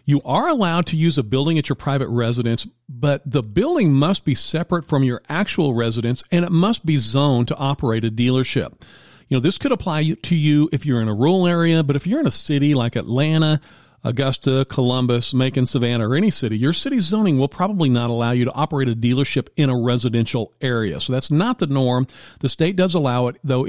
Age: 50-69